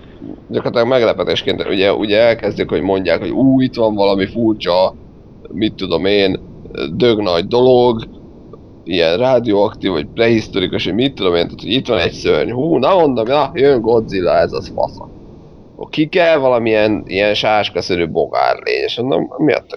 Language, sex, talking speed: Hungarian, male, 165 wpm